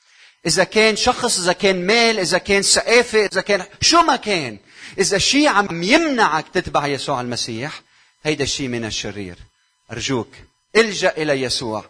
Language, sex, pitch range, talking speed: Arabic, male, 135-175 Hz, 145 wpm